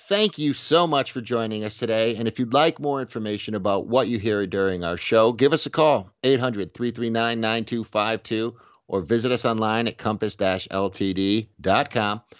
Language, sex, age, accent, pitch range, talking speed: English, male, 50-69, American, 100-125 Hz, 155 wpm